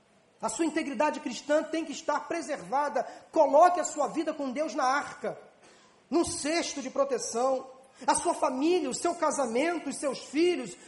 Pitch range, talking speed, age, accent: 275-335 Hz, 160 wpm, 40-59, Brazilian